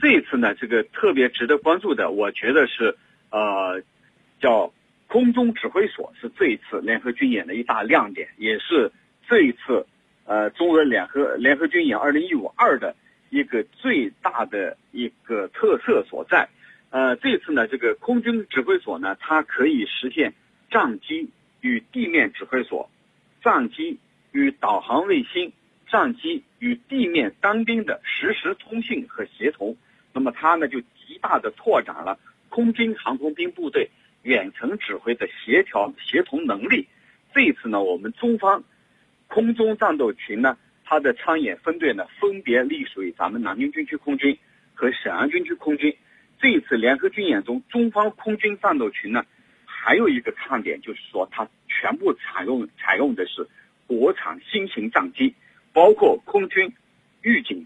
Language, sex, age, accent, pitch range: Chinese, male, 50-69, native, 220-345 Hz